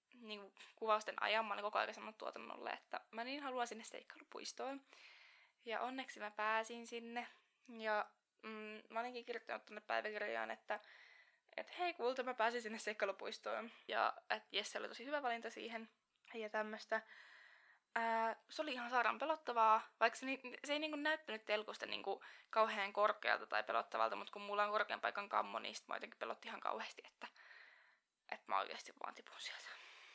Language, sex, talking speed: Finnish, female, 170 wpm